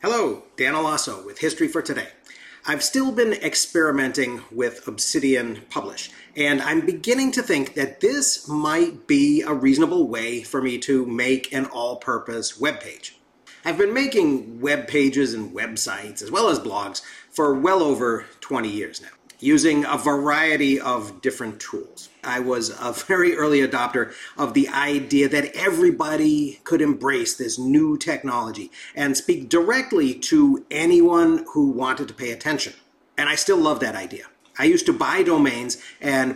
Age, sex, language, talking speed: 40-59, male, English, 155 wpm